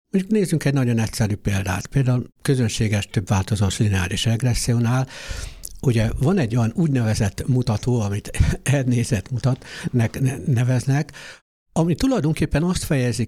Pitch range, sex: 115-150 Hz, male